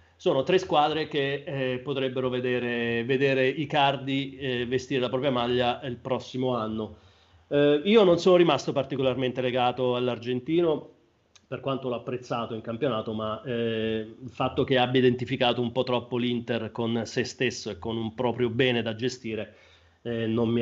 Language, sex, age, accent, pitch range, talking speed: Italian, male, 30-49, native, 120-140 Hz, 160 wpm